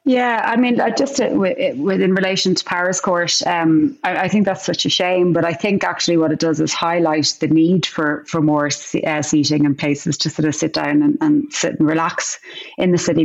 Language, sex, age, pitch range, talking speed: English, female, 30-49, 150-175 Hz, 205 wpm